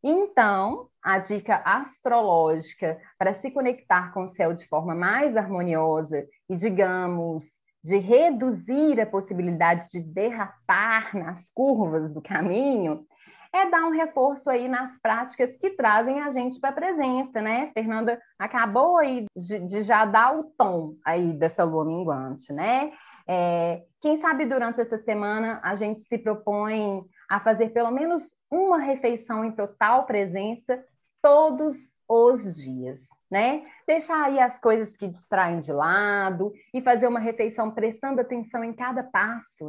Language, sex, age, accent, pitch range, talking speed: Portuguese, female, 20-39, Brazilian, 190-250 Hz, 145 wpm